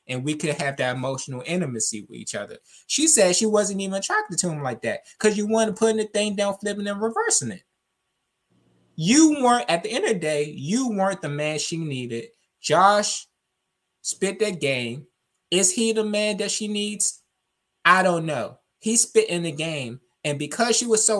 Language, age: English, 20-39